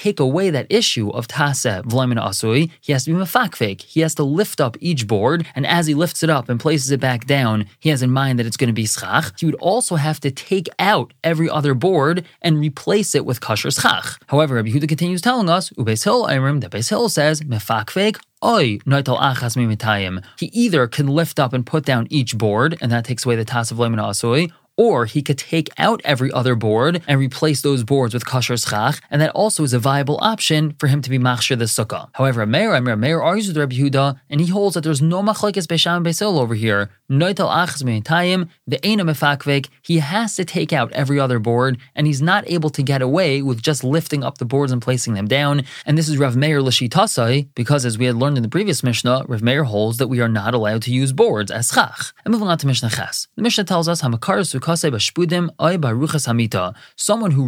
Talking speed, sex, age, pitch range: 210 wpm, male, 20-39, 125-165 Hz